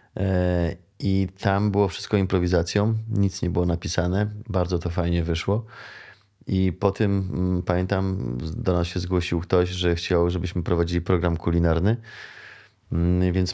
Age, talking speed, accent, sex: 30-49, 130 wpm, native, male